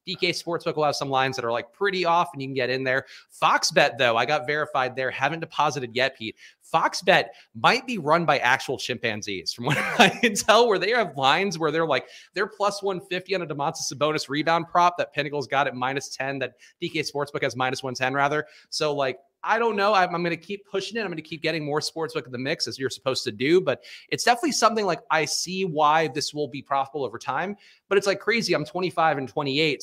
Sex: male